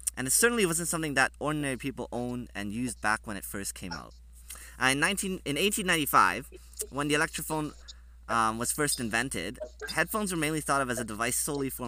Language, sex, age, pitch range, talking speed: English, male, 20-39, 105-150 Hz, 185 wpm